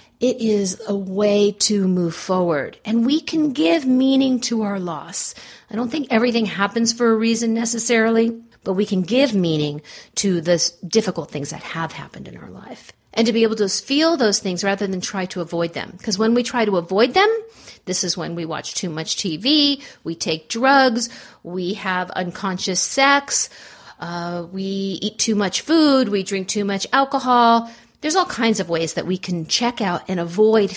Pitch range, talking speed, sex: 185-235 Hz, 190 wpm, female